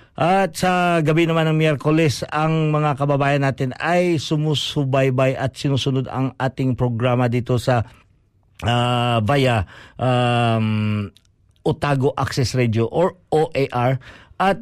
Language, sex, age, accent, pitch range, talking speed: Filipino, male, 50-69, native, 120-155 Hz, 115 wpm